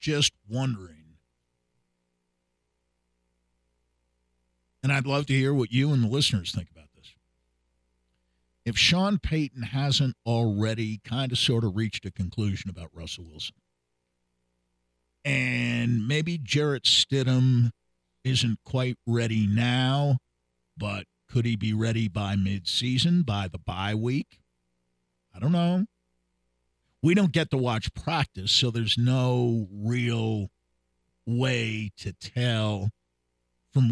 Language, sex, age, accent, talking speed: English, male, 50-69, American, 115 wpm